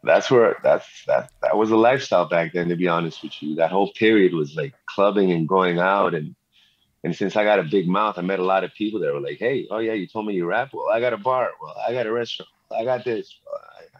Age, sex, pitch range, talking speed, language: 30-49, male, 95-120 Hz, 275 wpm, English